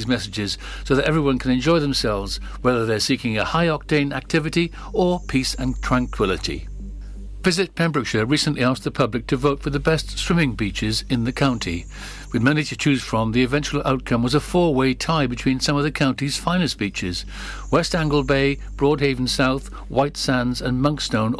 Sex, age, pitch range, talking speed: male, 60-79, 115-145 Hz, 170 wpm